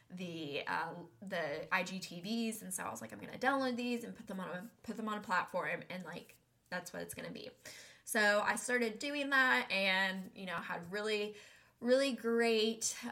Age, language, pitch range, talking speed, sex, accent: 10-29, English, 185-230 Hz, 200 wpm, female, American